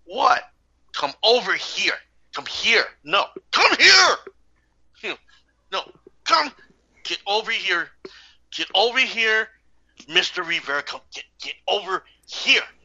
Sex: male